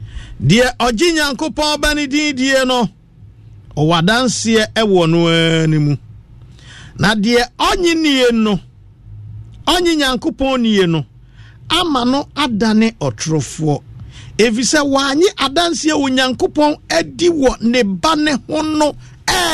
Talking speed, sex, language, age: 130 wpm, male, English, 50-69